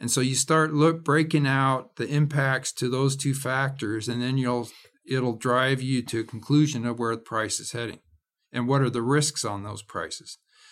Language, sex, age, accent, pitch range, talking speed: English, male, 50-69, American, 120-145 Hz, 200 wpm